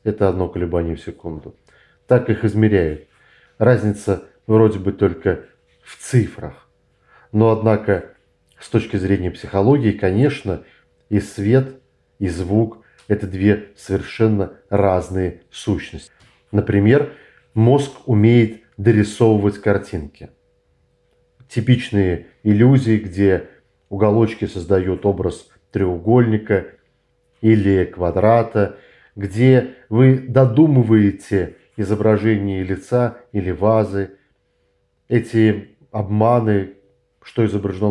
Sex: male